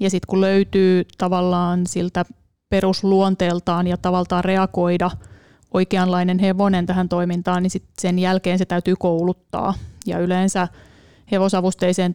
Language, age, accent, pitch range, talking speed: Finnish, 30-49, native, 180-195 Hz, 120 wpm